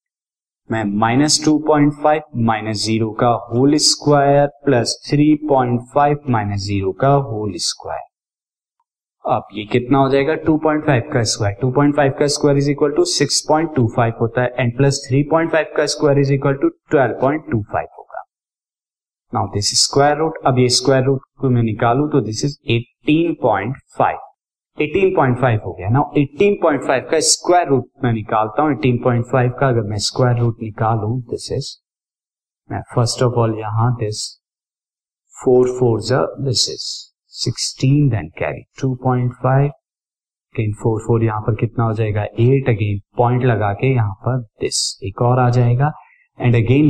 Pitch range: 115-145 Hz